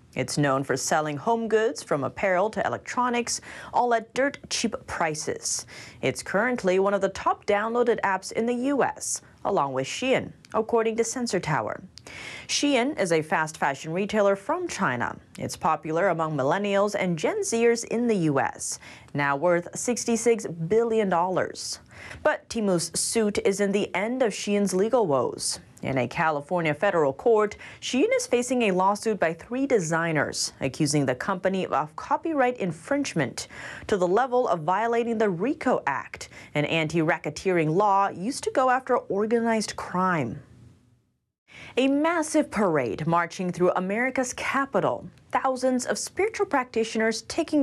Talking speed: 140 wpm